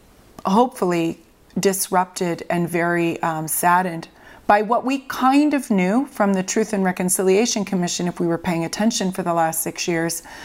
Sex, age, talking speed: female, 30-49, 160 wpm